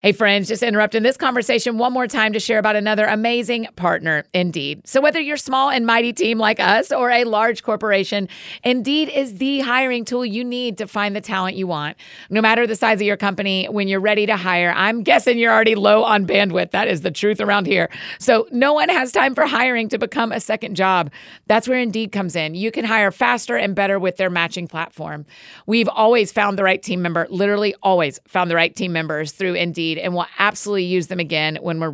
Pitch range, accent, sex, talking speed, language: 185-230 Hz, American, female, 225 wpm, English